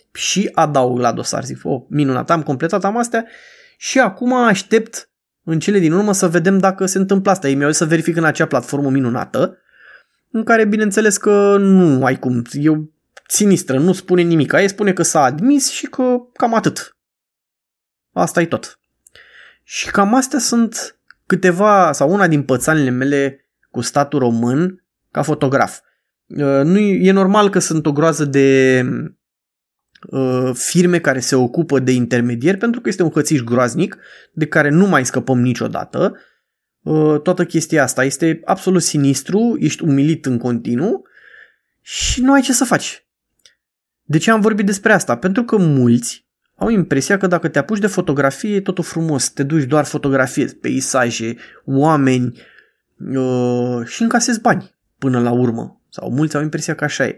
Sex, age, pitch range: male, 20-39, 135-200 Hz